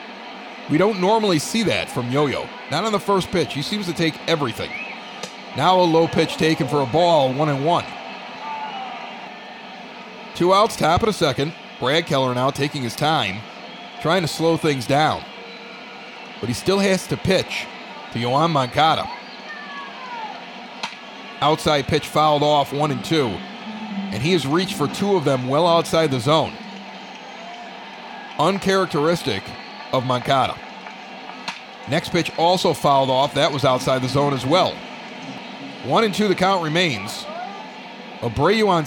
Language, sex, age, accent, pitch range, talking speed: English, male, 30-49, American, 145-205 Hz, 150 wpm